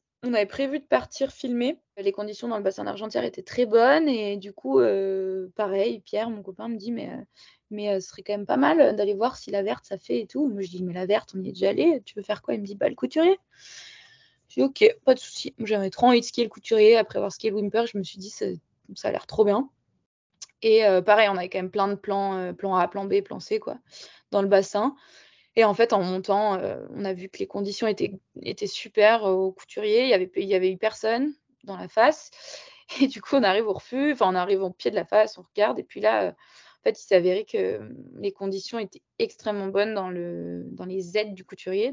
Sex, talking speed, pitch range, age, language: female, 270 wpm, 195-245 Hz, 20-39, French